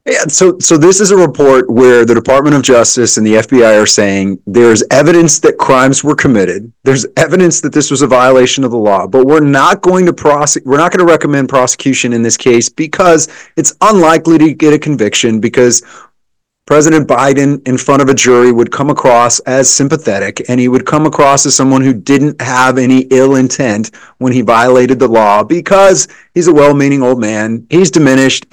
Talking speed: 200 wpm